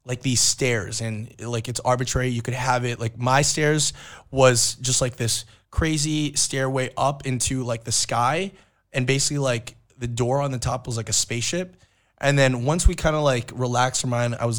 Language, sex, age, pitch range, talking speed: English, male, 20-39, 115-135 Hz, 200 wpm